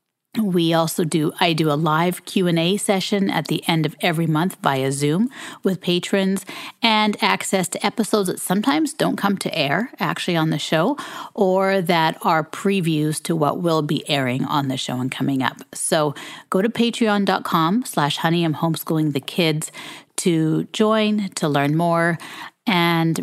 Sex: female